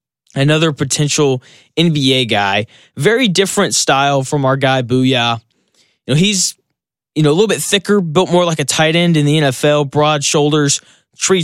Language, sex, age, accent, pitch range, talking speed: English, male, 20-39, American, 120-155 Hz, 170 wpm